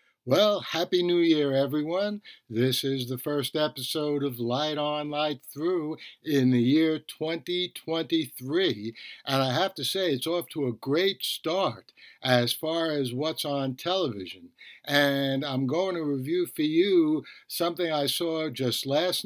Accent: American